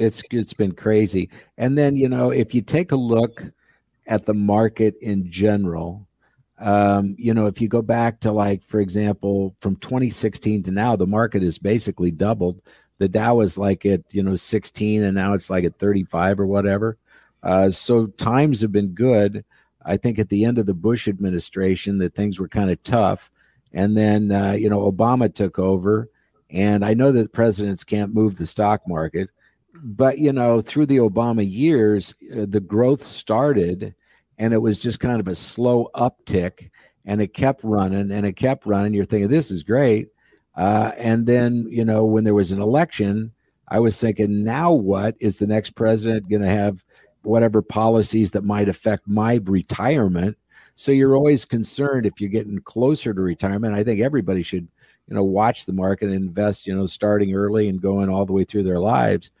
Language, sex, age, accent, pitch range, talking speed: English, male, 50-69, American, 100-115 Hz, 190 wpm